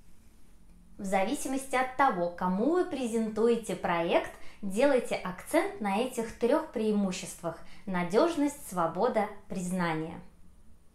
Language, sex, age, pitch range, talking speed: Russian, female, 20-39, 175-235 Hz, 95 wpm